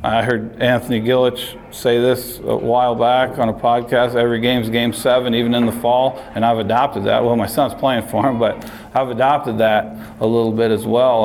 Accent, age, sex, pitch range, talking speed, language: American, 40-59, male, 110-120 Hz, 210 wpm, English